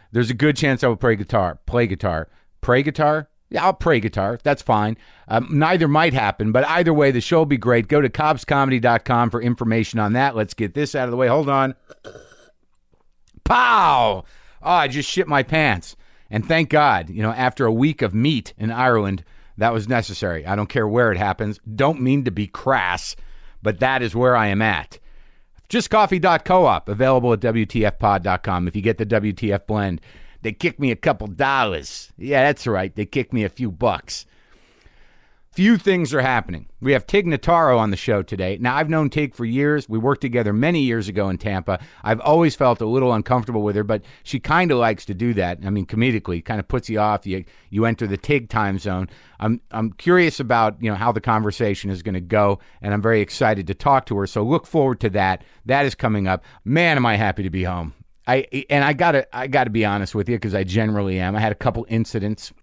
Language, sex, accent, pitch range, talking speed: English, male, American, 105-135 Hz, 215 wpm